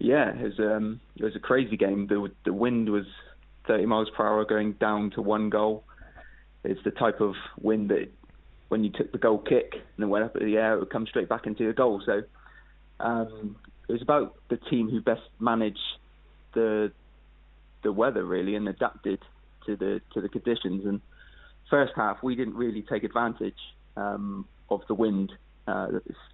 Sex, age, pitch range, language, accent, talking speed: male, 20-39, 105-110 Hz, English, British, 190 wpm